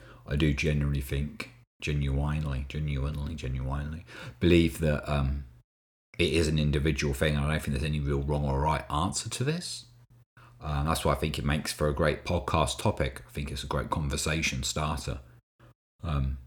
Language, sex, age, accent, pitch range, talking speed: English, male, 30-49, British, 70-90 Hz, 180 wpm